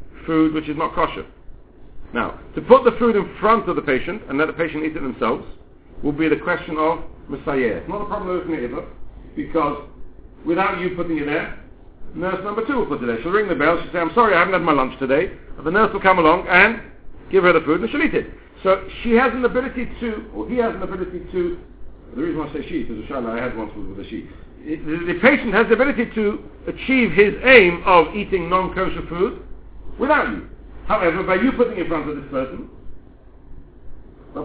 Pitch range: 155-205 Hz